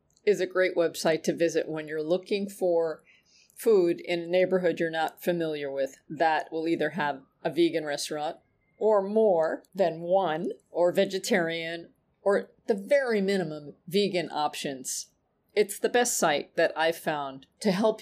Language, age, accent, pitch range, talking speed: English, 40-59, American, 155-205 Hz, 155 wpm